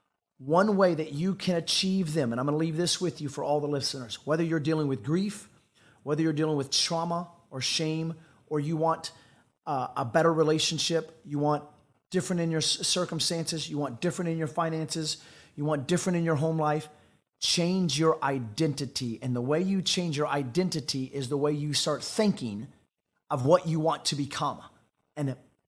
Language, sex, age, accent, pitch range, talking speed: English, male, 30-49, American, 140-165 Hz, 185 wpm